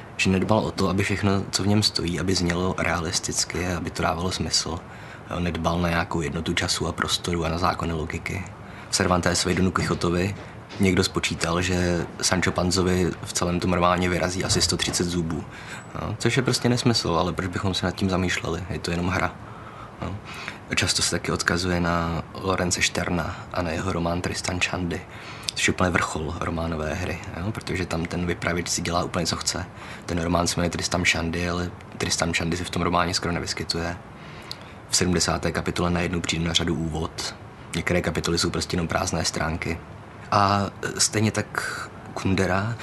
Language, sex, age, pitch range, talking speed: Czech, male, 20-39, 85-95 Hz, 175 wpm